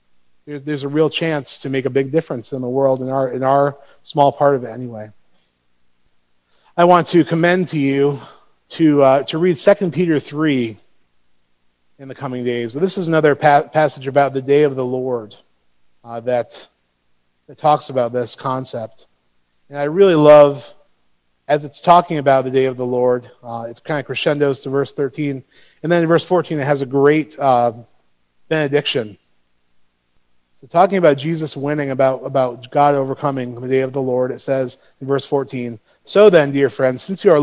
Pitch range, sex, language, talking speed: 115-150 Hz, male, English, 185 wpm